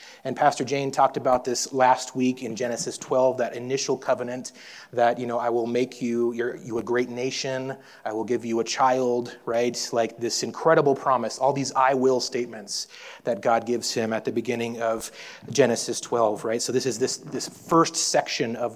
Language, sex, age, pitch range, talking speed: English, male, 30-49, 125-160 Hz, 195 wpm